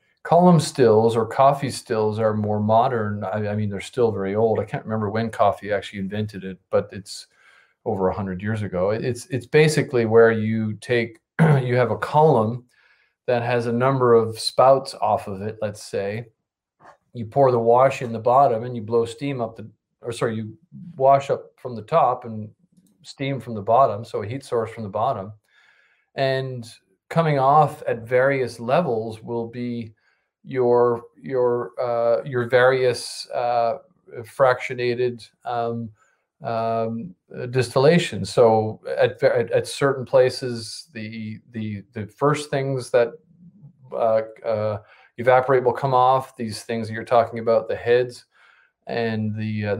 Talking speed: 160 wpm